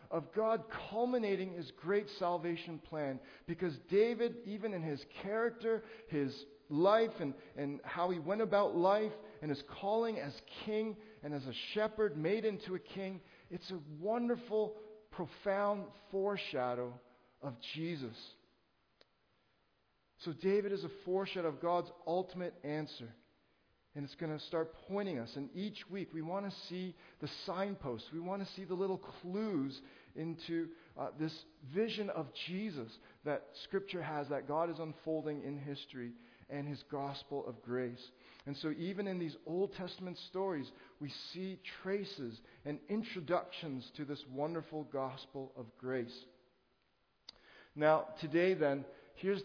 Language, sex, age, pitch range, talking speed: English, male, 50-69, 145-195 Hz, 140 wpm